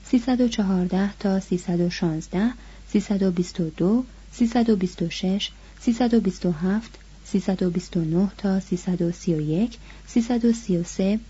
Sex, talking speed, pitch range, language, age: female, 55 wpm, 185-230 Hz, Persian, 30-49